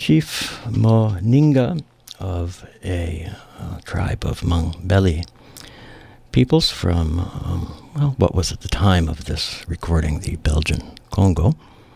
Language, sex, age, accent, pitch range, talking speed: English, male, 60-79, American, 80-105 Hz, 120 wpm